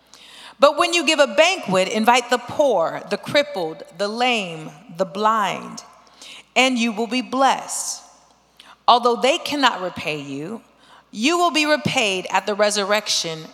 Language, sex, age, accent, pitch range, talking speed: English, female, 40-59, American, 215-280 Hz, 140 wpm